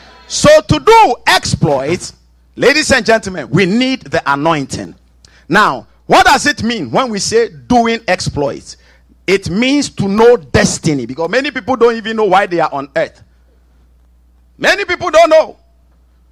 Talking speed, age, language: 150 wpm, 50-69, English